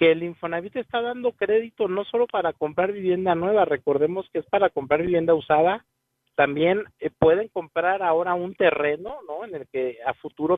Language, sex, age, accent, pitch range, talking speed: Spanish, male, 50-69, Mexican, 150-190 Hz, 175 wpm